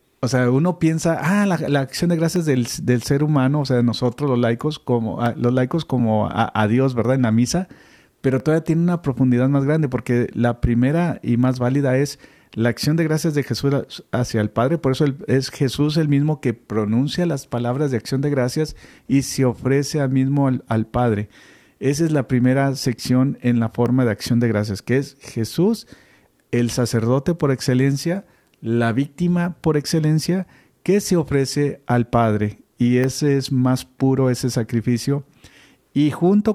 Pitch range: 120-150 Hz